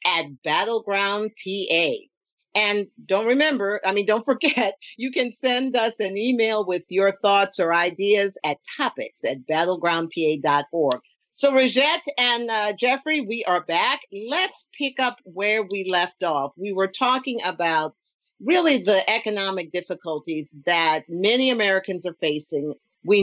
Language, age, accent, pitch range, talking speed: English, 50-69, American, 195-265 Hz, 140 wpm